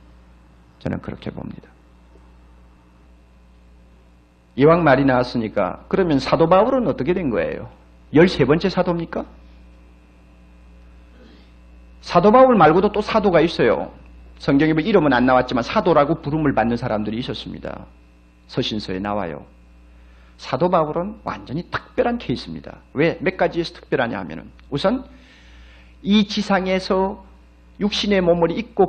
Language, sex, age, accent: Korean, male, 40-59, native